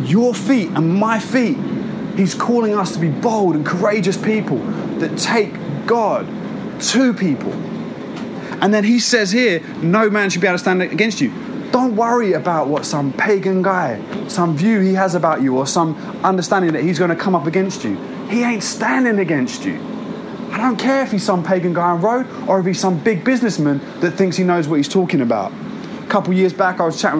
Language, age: English, 20-39